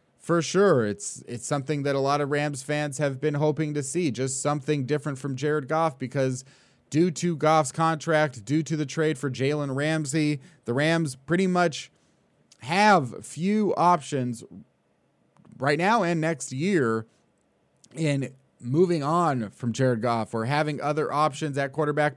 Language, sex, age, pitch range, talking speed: English, male, 30-49, 130-150 Hz, 155 wpm